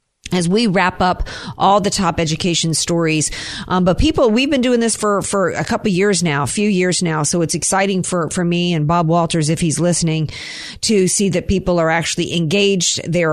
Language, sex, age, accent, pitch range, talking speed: English, female, 50-69, American, 160-210 Hz, 210 wpm